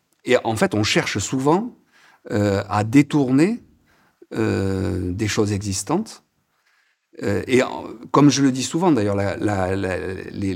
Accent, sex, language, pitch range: French, male, French, 95-115 Hz